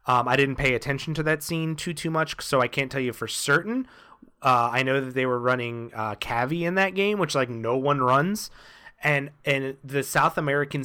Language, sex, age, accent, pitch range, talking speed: English, male, 30-49, American, 115-150 Hz, 220 wpm